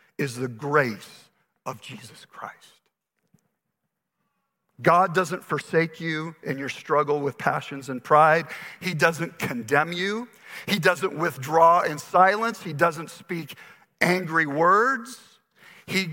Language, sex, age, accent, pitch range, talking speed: English, male, 50-69, American, 155-200 Hz, 120 wpm